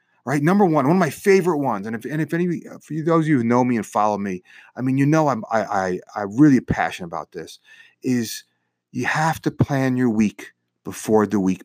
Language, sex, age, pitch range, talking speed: English, male, 40-59, 120-175 Hz, 230 wpm